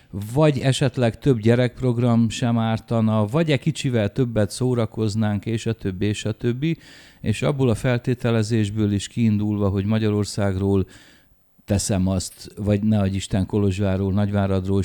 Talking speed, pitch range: 130 wpm, 90-110 Hz